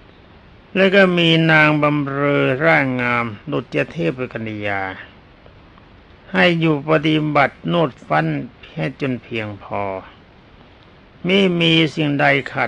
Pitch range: 105-155 Hz